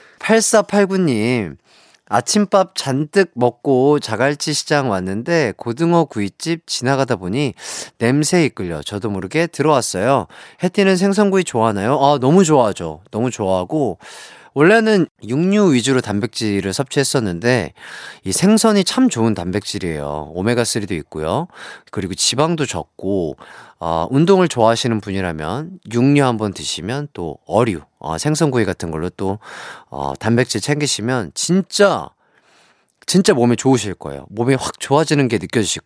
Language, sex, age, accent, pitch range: Korean, male, 30-49, native, 110-180 Hz